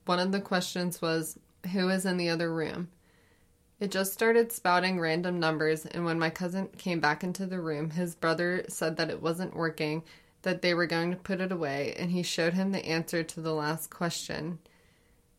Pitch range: 160-185 Hz